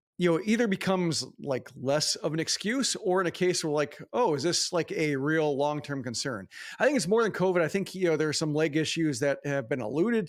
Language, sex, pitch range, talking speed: English, male, 145-180 Hz, 250 wpm